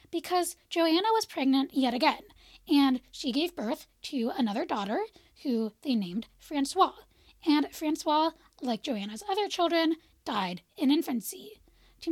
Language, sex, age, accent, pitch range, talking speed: English, female, 10-29, American, 245-330 Hz, 135 wpm